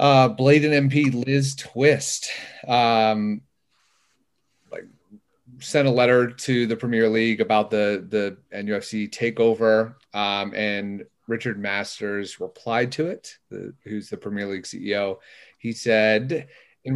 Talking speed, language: 125 wpm, English